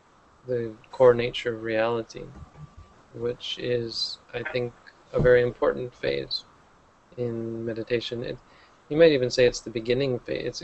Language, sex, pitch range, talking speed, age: English, male, 115-130 Hz, 140 wpm, 20-39